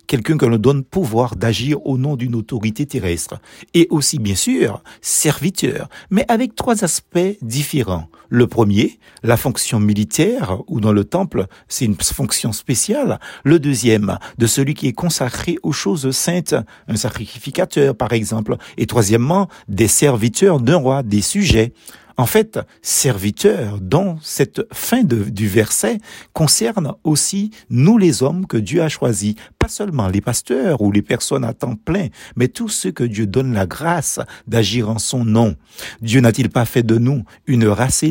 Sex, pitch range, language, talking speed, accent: male, 110-160 Hz, French, 160 wpm, French